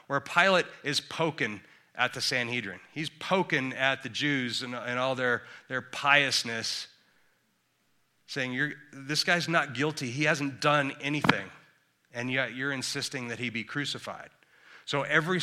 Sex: male